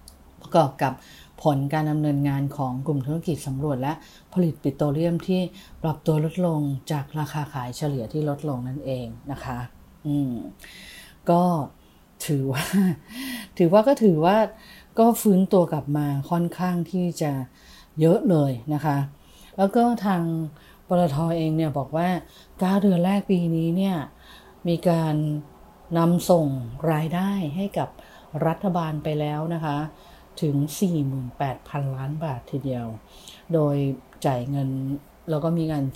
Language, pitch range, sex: English, 135-170 Hz, female